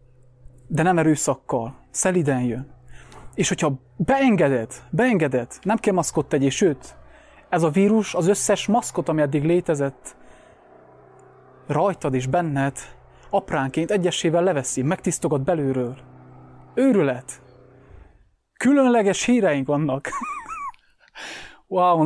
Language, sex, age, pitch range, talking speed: English, male, 30-49, 135-175 Hz, 95 wpm